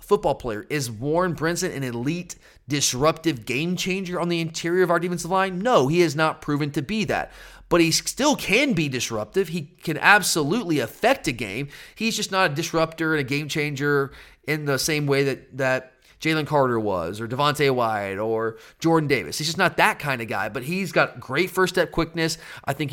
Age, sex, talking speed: 30-49, male, 200 wpm